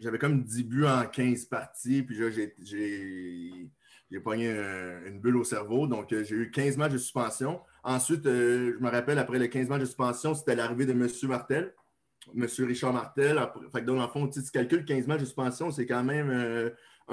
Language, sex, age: French, male, 30-49